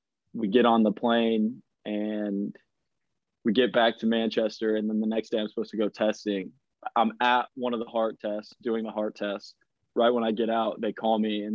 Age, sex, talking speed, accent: 20-39, male, 215 wpm, American